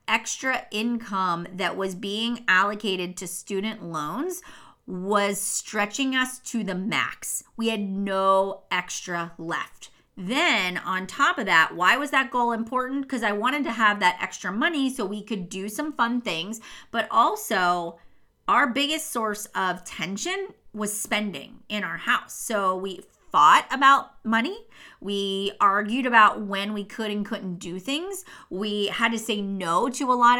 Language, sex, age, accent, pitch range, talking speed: English, female, 30-49, American, 190-245 Hz, 155 wpm